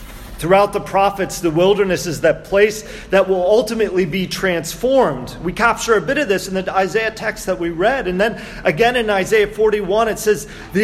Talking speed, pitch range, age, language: 195 wpm, 135-195 Hz, 40-59, English